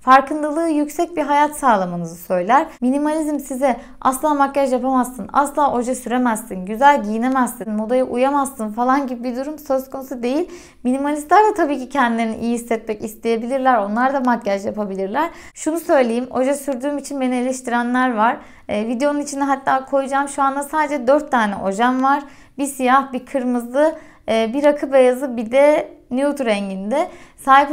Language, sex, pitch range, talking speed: Turkish, female, 230-285 Hz, 150 wpm